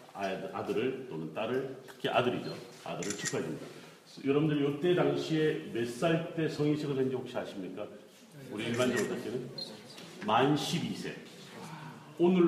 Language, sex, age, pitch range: Korean, male, 40-59, 125-160 Hz